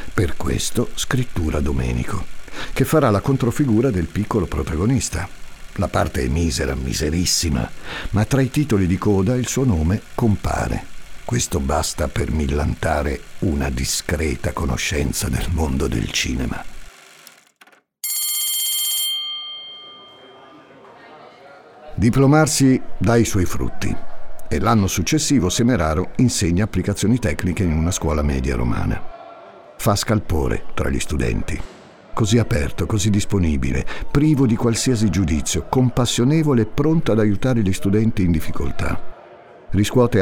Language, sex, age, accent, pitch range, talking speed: Italian, male, 50-69, native, 85-120 Hz, 115 wpm